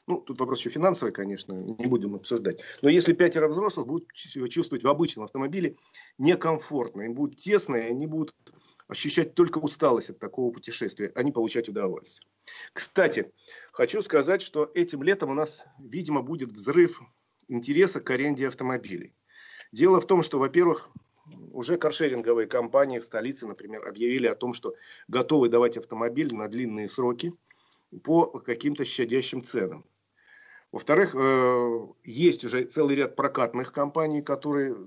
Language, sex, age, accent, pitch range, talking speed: Russian, male, 40-59, native, 125-165 Hz, 145 wpm